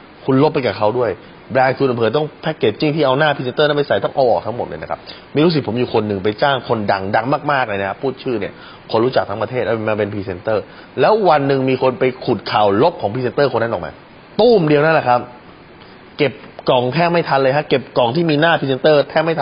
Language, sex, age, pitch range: Thai, male, 20-39, 105-145 Hz